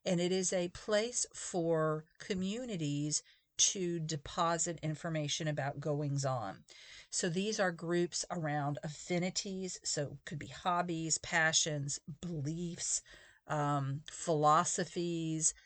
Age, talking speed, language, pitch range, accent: 50-69, 105 wpm, English, 150-175 Hz, American